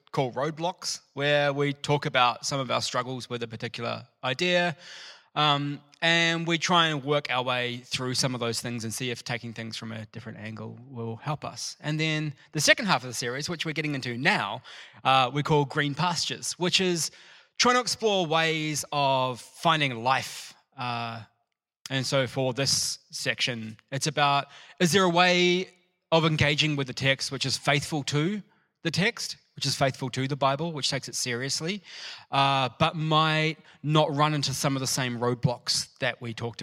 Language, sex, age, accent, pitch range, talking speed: English, male, 20-39, Australian, 120-155 Hz, 185 wpm